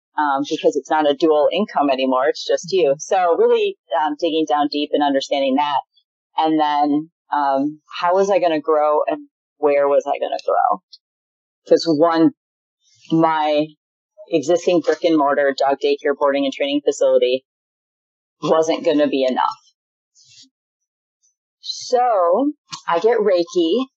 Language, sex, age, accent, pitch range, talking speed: English, female, 30-49, American, 155-225 Hz, 145 wpm